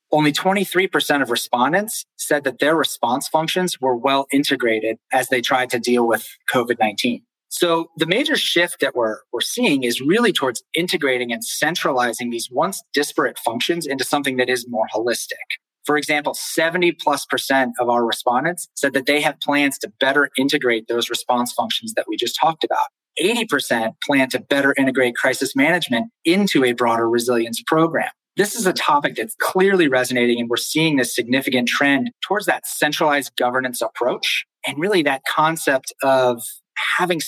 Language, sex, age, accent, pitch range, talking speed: English, male, 30-49, American, 125-165 Hz, 165 wpm